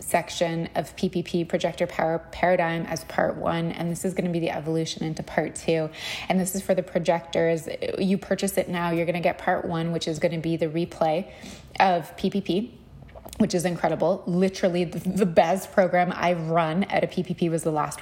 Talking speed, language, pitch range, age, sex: 200 wpm, English, 165-185 Hz, 20-39, female